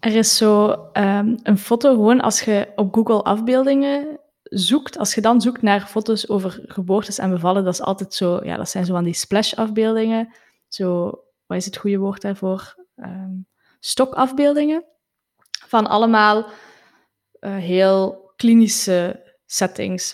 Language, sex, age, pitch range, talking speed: Dutch, female, 20-39, 195-255 Hz, 145 wpm